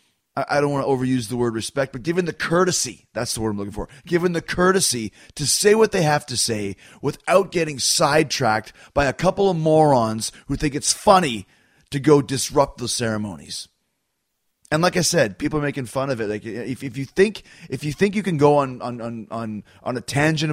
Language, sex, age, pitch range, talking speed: English, male, 30-49, 120-155 Hz, 215 wpm